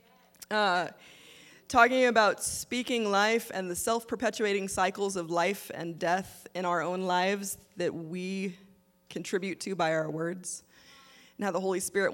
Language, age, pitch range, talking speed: English, 20-39, 180-225 Hz, 140 wpm